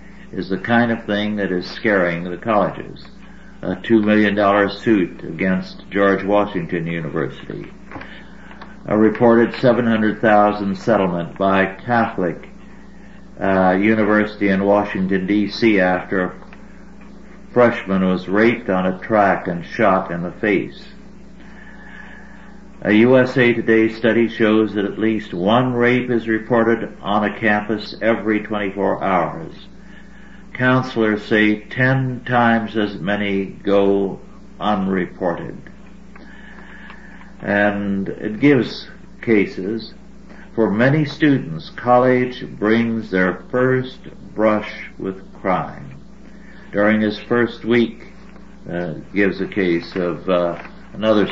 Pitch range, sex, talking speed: 100-150 Hz, male, 110 wpm